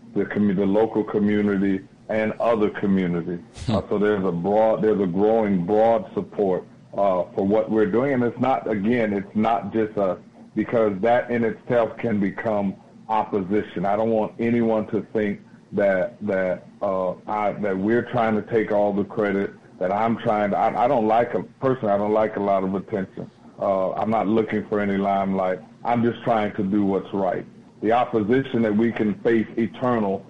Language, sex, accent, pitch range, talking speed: English, male, American, 100-115 Hz, 185 wpm